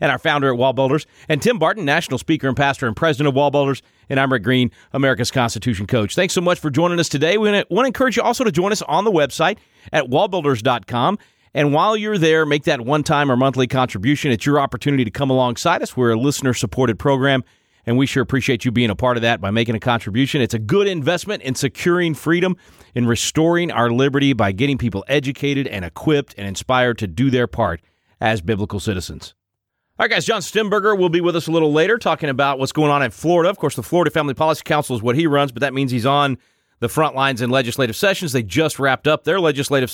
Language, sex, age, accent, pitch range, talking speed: English, male, 40-59, American, 125-155 Hz, 230 wpm